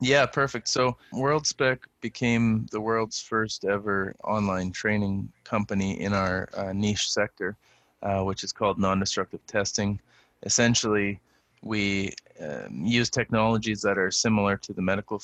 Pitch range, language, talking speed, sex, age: 100-110 Hz, English, 135 wpm, male, 20-39